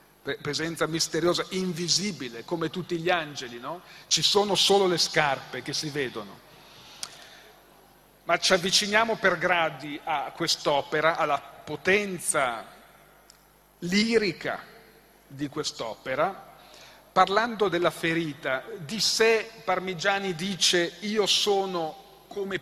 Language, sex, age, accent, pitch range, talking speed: Italian, male, 40-59, native, 165-200 Hz, 100 wpm